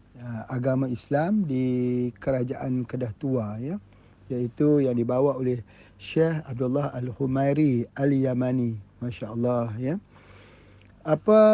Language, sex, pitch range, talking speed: Malay, male, 120-145 Hz, 95 wpm